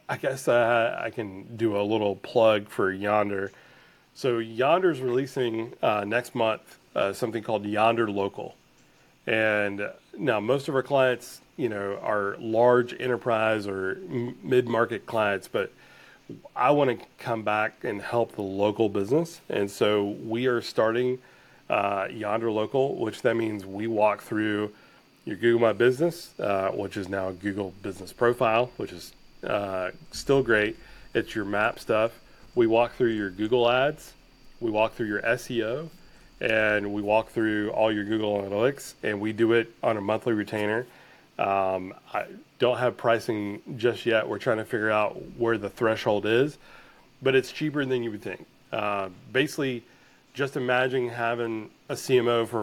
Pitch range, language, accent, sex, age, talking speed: 105-120 Hz, English, American, male, 30-49, 160 wpm